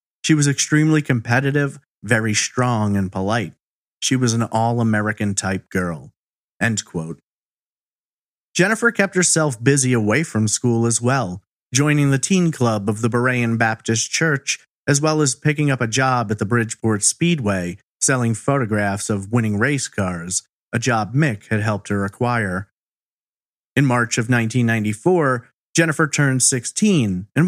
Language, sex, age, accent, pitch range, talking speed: English, male, 40-59, American, 105-135 Hz, 145 wpm